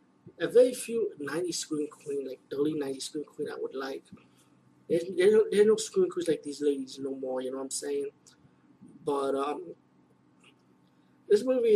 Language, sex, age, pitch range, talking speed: English, male, 30-49, 135-170 Hz, 190 wpm